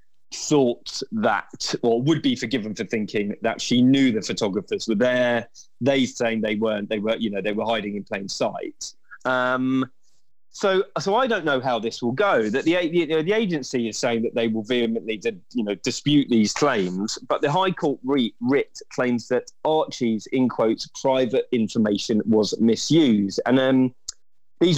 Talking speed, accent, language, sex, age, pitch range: 175 wpm, British, English, male, 20-39, 110-150 Hz